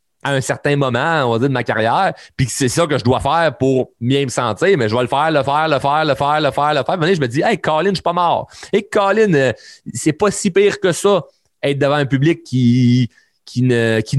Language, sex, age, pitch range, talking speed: French, male, 30-49, 115-155 Hz, 275 wpm